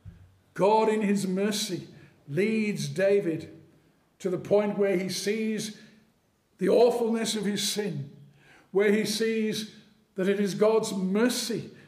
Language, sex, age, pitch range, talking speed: English, male, 50-69, 195-225 Hz, 125 wpm